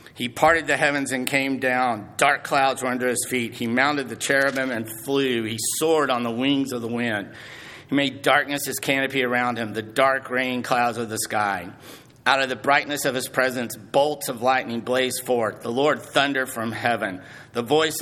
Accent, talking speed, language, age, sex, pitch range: American, 200 wpm, English, 50-69, male, 120-140 Hz